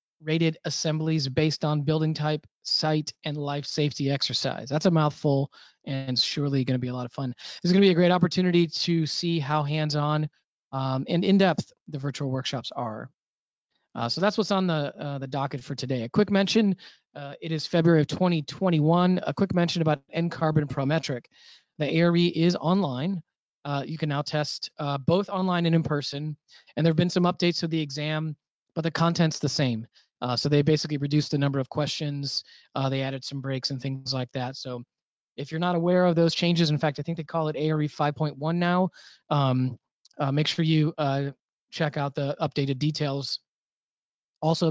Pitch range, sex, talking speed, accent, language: 140-165 Hz, male, 195 wpm, American, English